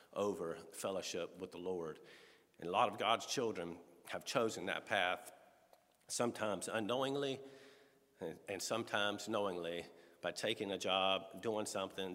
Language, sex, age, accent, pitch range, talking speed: English, male, 50-69, American, 95-130 Hz, 130 wpm